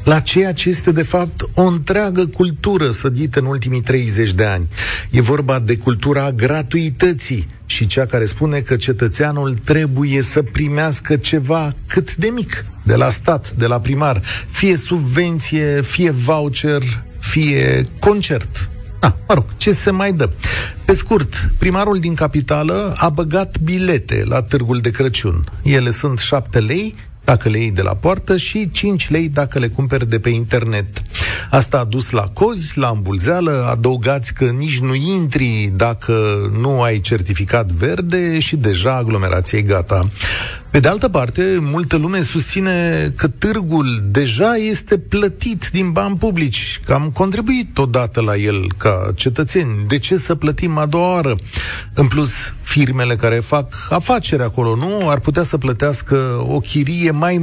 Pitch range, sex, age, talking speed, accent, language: 115-170 Hz, male, 40-59, 155 wpm, native, Romanian